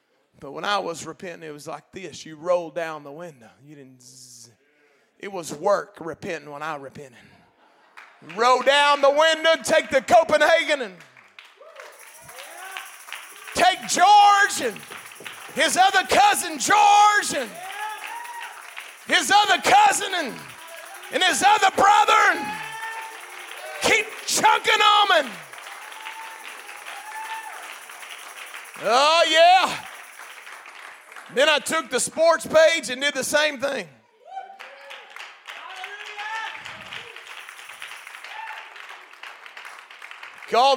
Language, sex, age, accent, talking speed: English, male, 40-59, American, 95 wpm